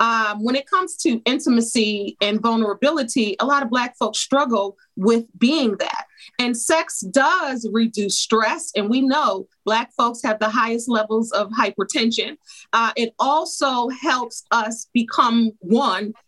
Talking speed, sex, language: 145 wpm, female, English